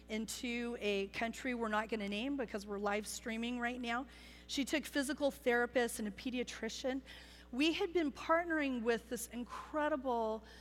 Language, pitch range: English, 200-240 Hz